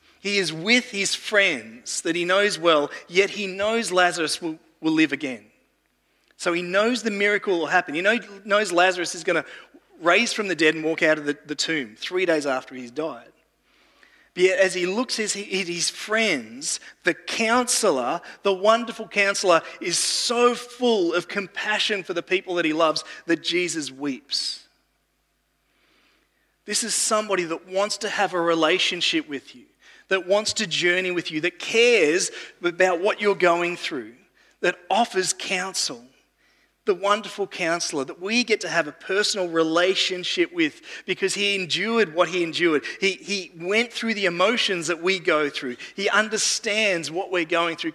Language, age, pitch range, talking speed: English, 30-49, 170-215 Hz, 170 wpm